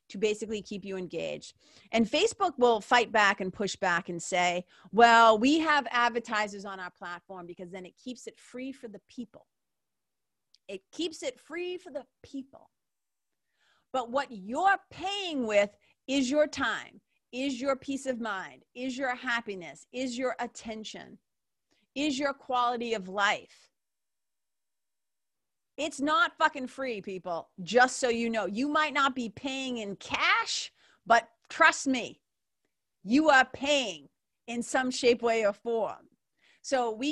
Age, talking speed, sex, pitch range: 40-59, 150 wpm, female, 205-270 Hz